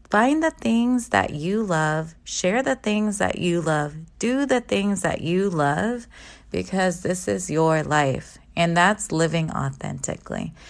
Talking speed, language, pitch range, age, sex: 150 wpm, English, 155-190 Hz, 20-39, female